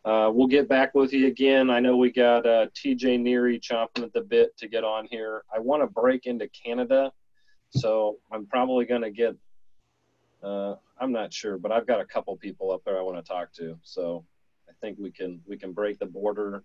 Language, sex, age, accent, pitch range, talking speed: English, male, 40-59, American, 95-120 Hz, 215 wpm